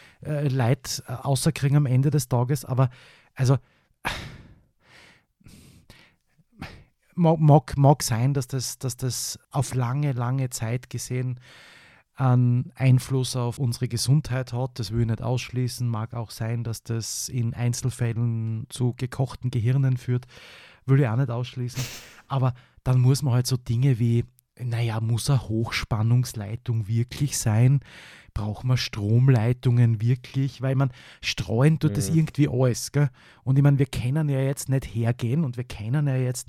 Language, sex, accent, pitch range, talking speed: German, male, Austrian, 120-140 Hz, 145 wpm